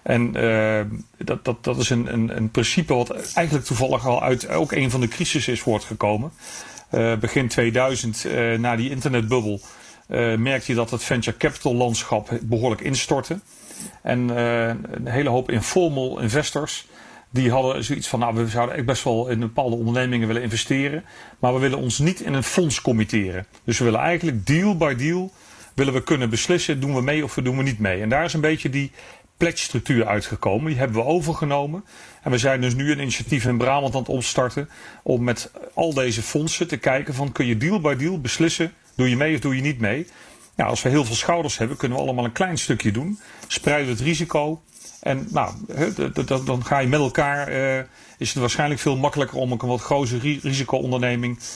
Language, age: English, 40-59